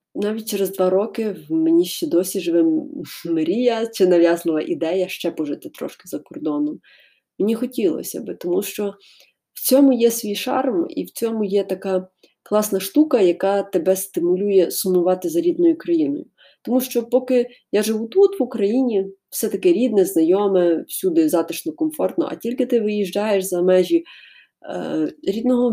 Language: Ukrainian